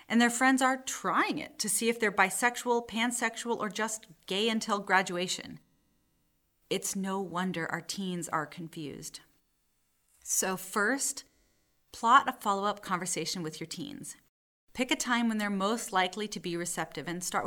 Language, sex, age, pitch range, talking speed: English, female, 30-49, 175-245 Hz, 155 wpm